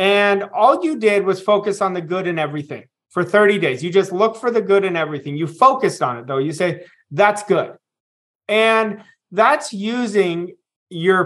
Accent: American